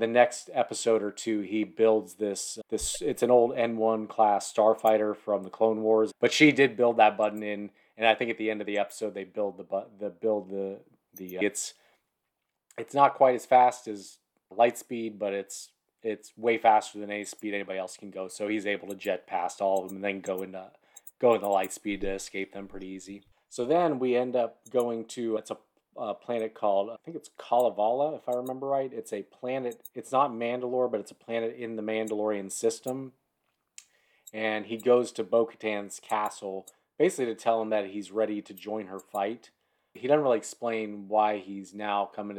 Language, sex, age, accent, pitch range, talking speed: English, male, 30-49, American, 100-115 Hz, 210 wpm